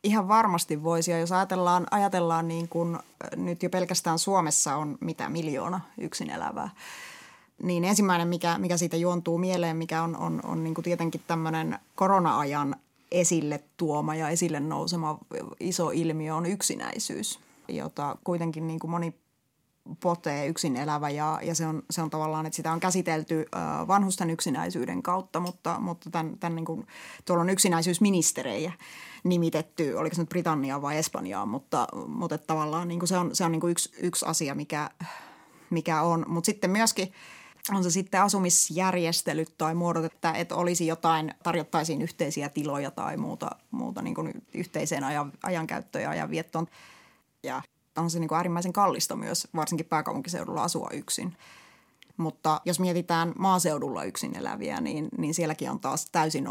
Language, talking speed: Finnish, 155 wpm